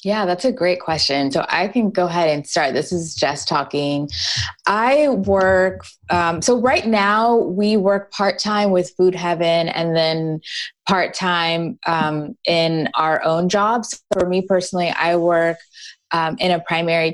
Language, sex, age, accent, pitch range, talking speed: English, female, 20-39, American, 160-190 Hz, 160 wpm